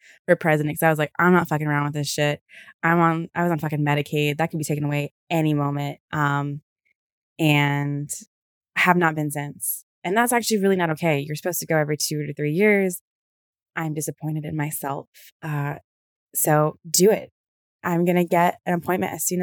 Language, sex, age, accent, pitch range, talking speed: English, female, 20-39, American, 150-180 Hz, 190 wpm